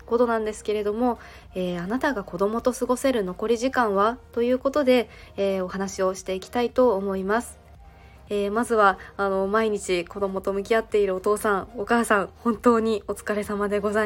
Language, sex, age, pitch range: Japanese, female, 20-39, 200-235 Hz